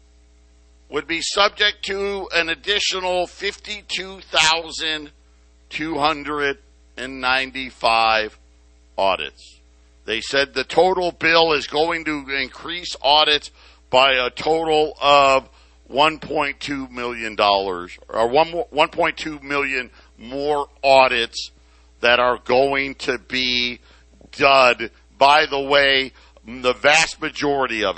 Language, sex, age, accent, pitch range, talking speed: English, male, 50-69, American, 120-165 Hz, 110 wpm